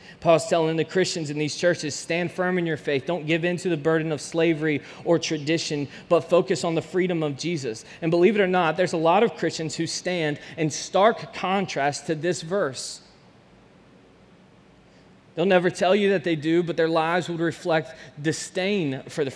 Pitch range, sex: 160-185 Hz, male